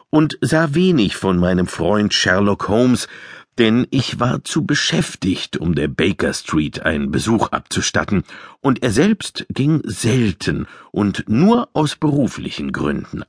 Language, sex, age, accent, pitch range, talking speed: German, male, 50-69, German, 110-180 Hz, 135 wpm